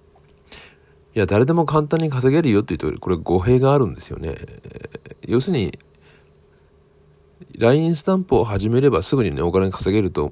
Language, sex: Japanese, male